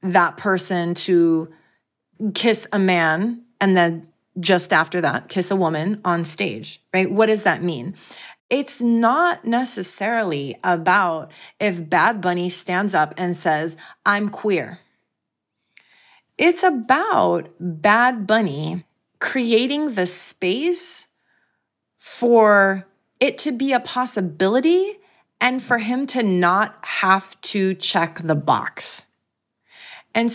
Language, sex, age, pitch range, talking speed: English, female, 30-49, 180-235 Hz, 115 wpm